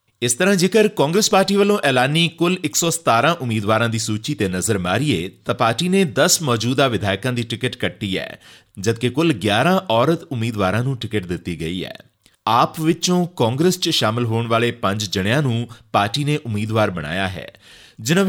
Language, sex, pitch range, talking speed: Punjabi, male, 105-155 Hz, 165 wpm